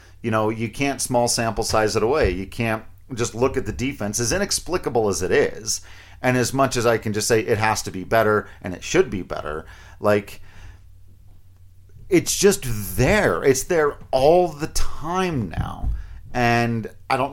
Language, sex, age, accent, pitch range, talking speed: English, male, 40-59, American, 95-120 Hz, 180 wpm